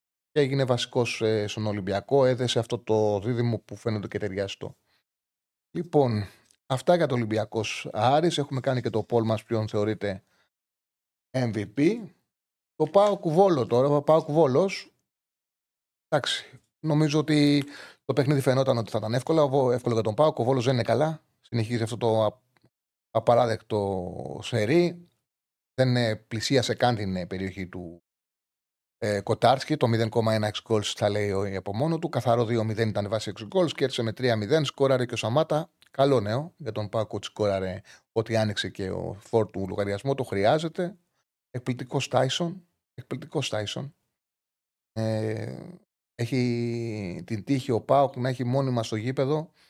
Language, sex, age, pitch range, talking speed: Greek, male, 30-49, 110-140 Hz, 145 wpm